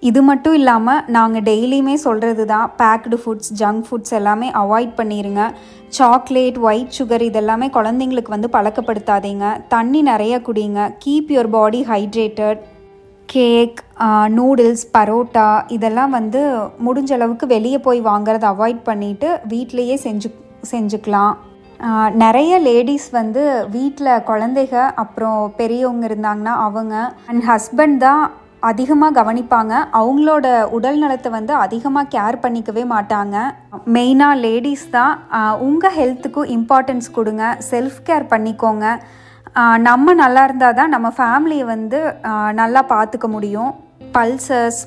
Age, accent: 20-39, native